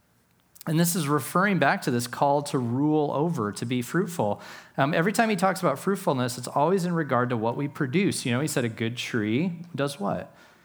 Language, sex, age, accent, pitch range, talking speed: English, male, 30-49, American, 125-170 Hz, 215 wpm